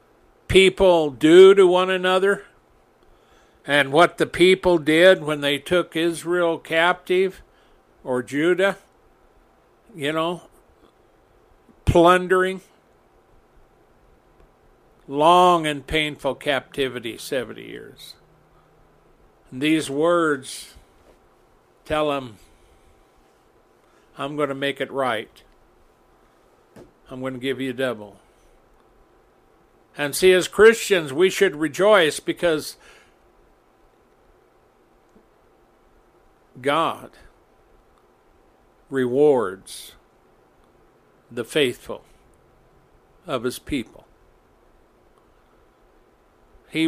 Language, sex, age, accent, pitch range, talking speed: English, male, 60-79, American, 135-180 Hz, 75 wpm